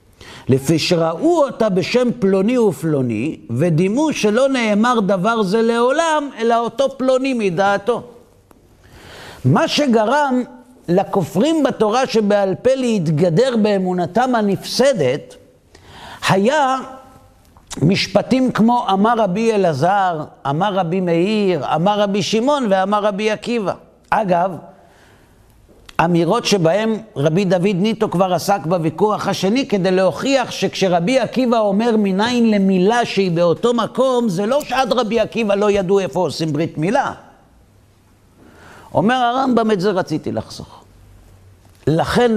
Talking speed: 110 wpm